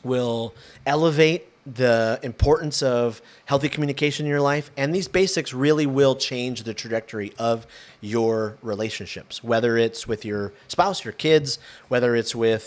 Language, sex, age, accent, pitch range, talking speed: English, male, 30-49, American, 115-165 Hz, 145 wpm